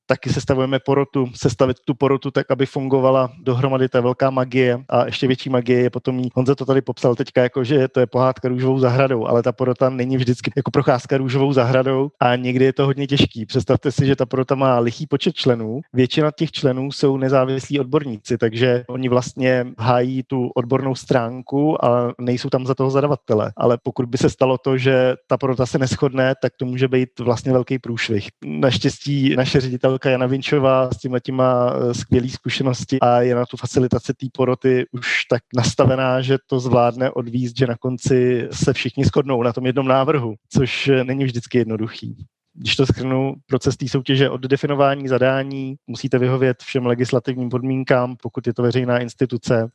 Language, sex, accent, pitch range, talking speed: Czech, male, native, 125-135 Hz, 180 wpm